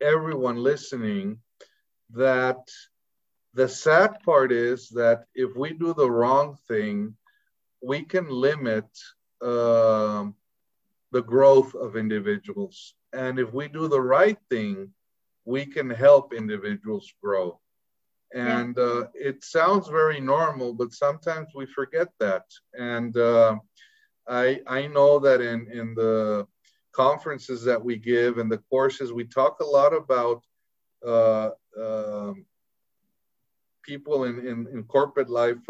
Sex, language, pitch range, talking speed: male, English, 115-140 Hz, 125 wpm